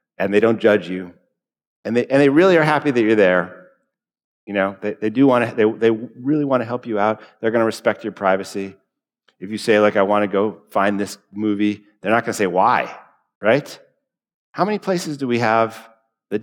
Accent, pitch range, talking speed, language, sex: American, 100-130 Hz, 220 wpm, English, male